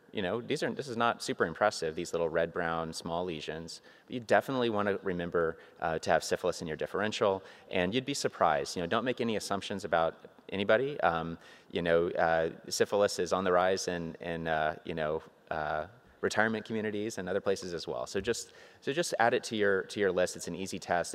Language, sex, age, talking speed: English, male, 30-49, 220 wpm